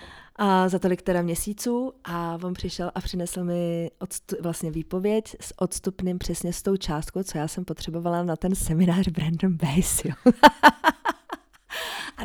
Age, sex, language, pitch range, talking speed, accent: 20-39, female, Czech, 170-205 Hz, 145 wpm, native